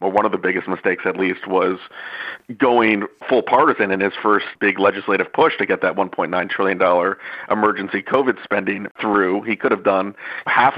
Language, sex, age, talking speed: English, male, 40-59, 180 wpm